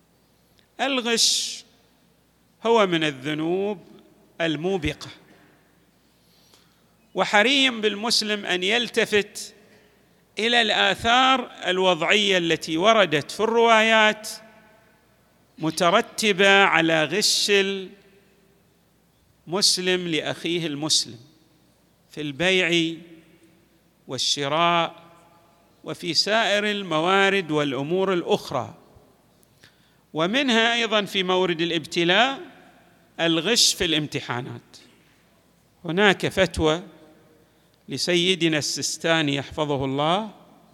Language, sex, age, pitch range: Arabic, male, 40-59, 160-200 Hz